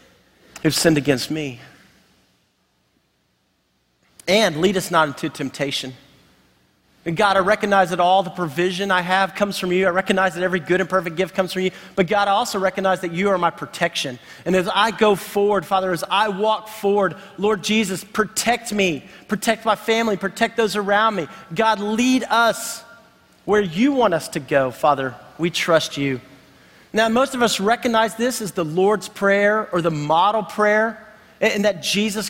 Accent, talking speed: American, 175 wpm